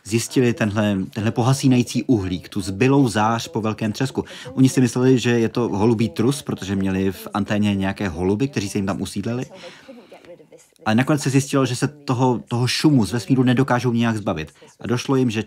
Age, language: 20-39, Czech